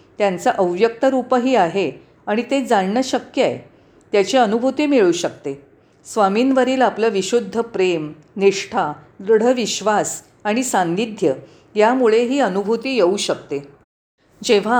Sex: female